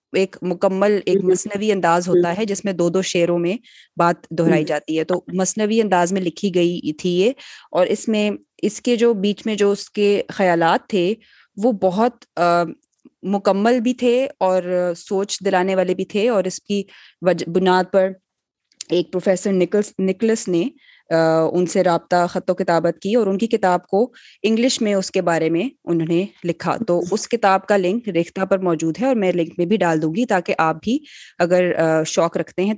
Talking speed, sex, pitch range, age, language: 190 wpm, female, 170-205 Hz, 20-39, Urdu